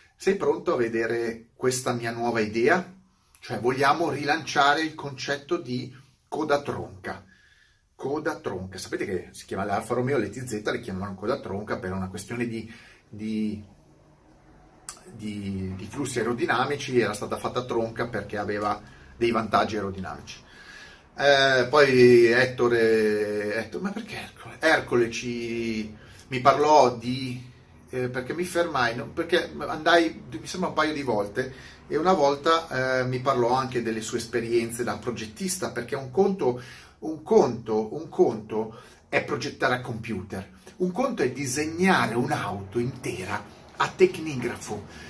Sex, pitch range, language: male, 110-140 Hz, Italian